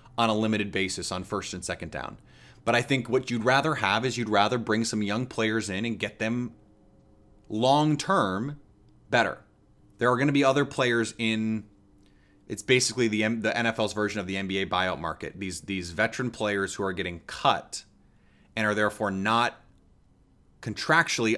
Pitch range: 100-120 Hz